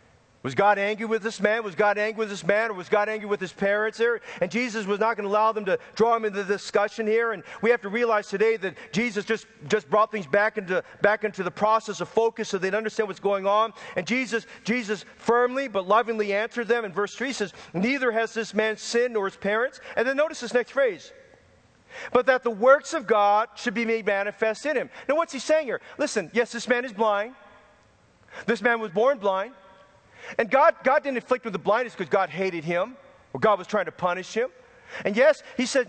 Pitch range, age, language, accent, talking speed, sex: 205-245 Hz, 40-59, English, American, 230 wpm, male